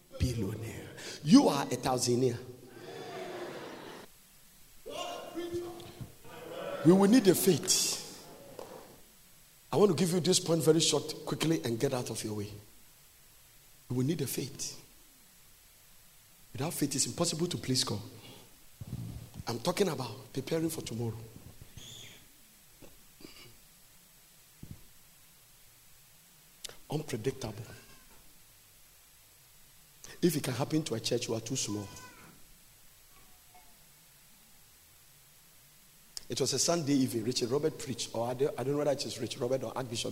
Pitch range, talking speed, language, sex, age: 120-150 Hz, 110 wpm, English, male, 50-69